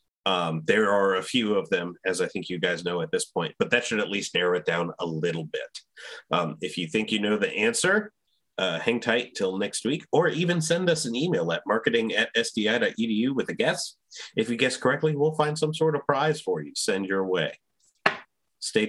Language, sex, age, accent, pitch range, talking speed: English, male, 30-49, American, 105-155 Hz, 220 wpm